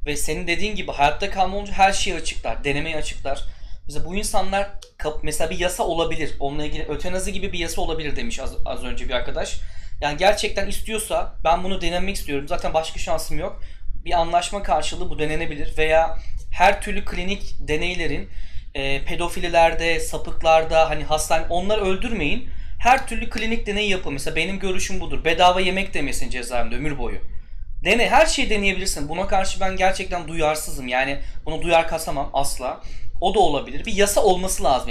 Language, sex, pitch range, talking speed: Turkish, male, 150-195 Hz, 160 wpm